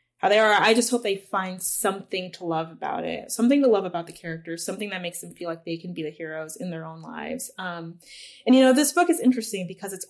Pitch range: 175-220 Hz